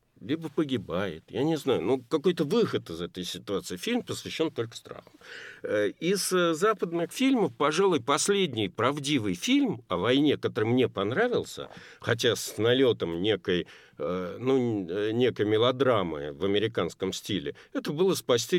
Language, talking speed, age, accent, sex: Russian, 125 wpm, 50-69, native, male